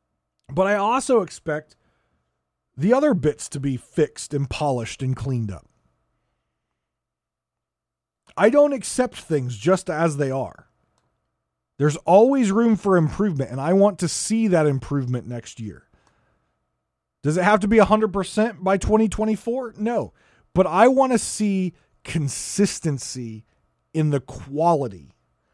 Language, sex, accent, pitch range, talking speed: English, male, American, 130-200 Hz, 125 wpm